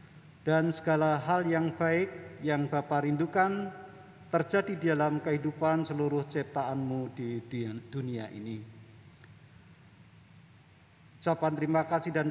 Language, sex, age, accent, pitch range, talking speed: Indonesian, male, 50-69, native, 140-170 Hz, 100 wpm